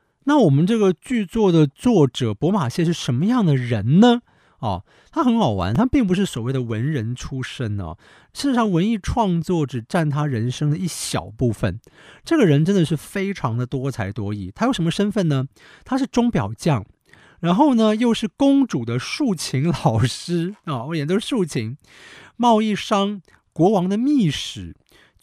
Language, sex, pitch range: Chinese, male, 120-185 Hz